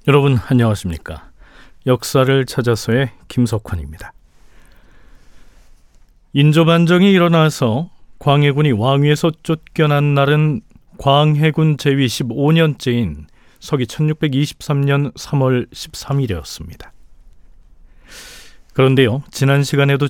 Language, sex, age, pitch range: Korean, male, 40-59, 115-155 Hz